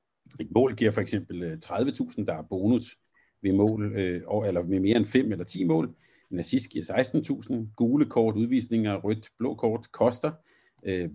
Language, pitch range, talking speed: Danish, 105-125 Hz, 160 wpm